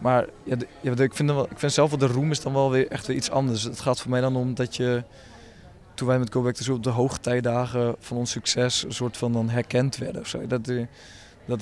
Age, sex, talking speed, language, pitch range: 20-39, male, 240 wpm, Dutch, 120-140 Hz